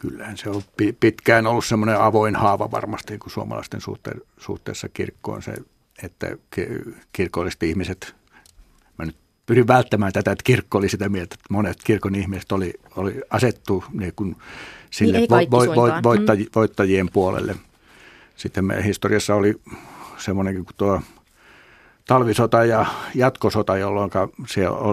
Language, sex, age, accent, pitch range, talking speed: Finnish, male, 60-79, native, 95-115 Hz, 130 wpm